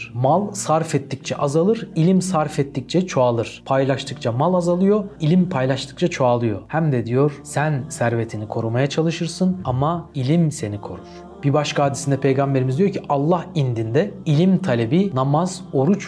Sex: male